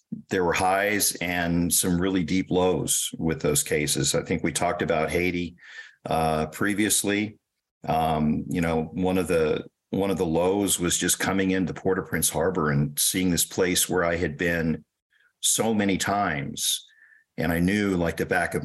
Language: English